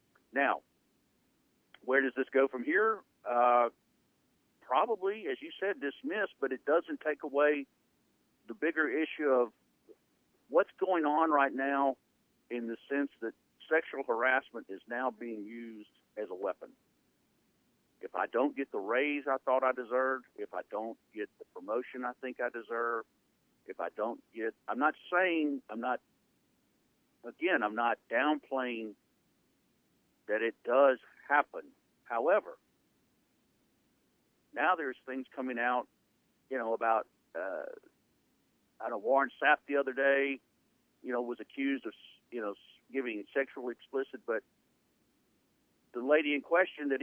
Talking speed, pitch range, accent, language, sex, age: 140 wpm, 125-170 Hz, American, English, male, 50-69